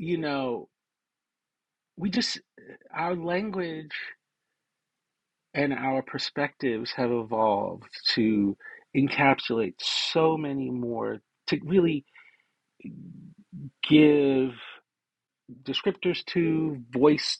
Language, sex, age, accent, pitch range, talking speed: English, male, 40-59, American, 110-145 Hz, 75 wpm